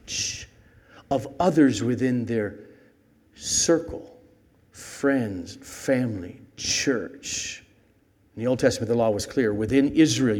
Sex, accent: male, American